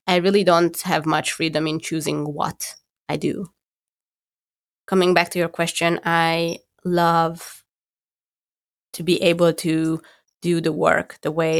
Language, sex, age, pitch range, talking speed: English, female, 20-39, 155-175 Hz, 140 wpm